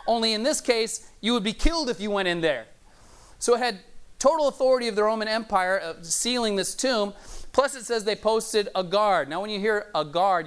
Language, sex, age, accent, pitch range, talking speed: English, male, 30-49, American, 180-230 Hz, 225 wpm